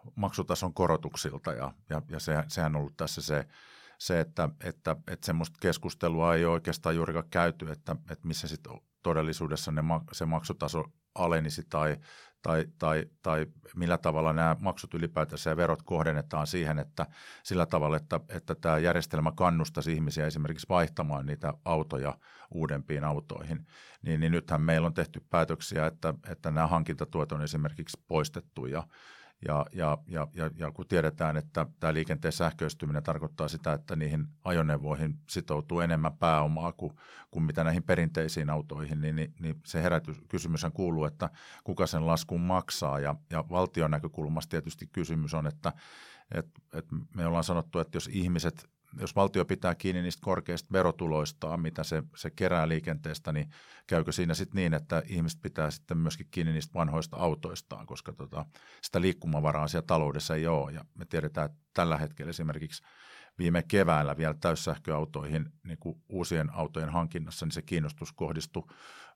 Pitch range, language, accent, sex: 75-85 Hz, Finnish, native, male